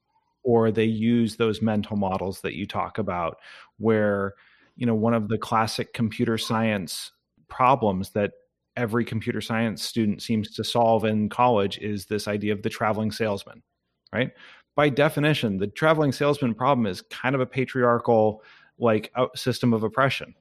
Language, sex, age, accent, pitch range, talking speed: English, male, 30-49, American, 105-120 Hz, 155 wpm